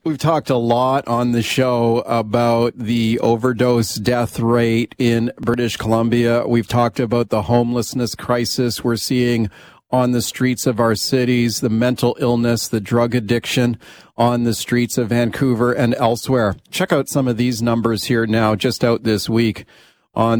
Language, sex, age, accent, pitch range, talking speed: English, male, 40-59, American, 115-130 Hz, 160 wpm